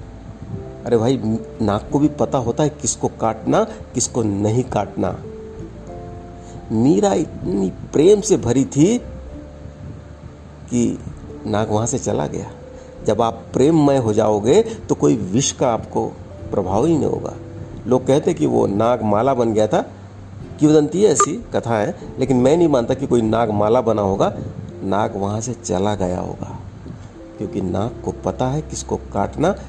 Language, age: Hindi, 60-79